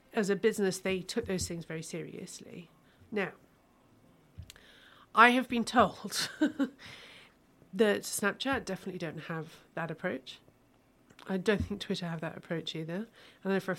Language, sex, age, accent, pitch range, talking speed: English, female, 40-59, British, 175-225 Hz, 145 wpm